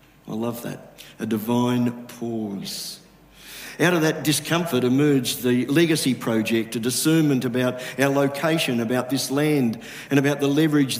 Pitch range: 125-155 Hz